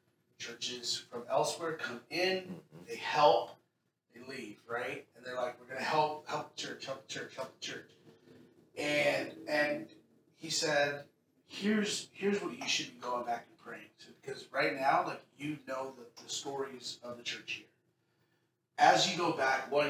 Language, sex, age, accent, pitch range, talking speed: English, male, 30-49, American, 125-155 Hz, 180 wpm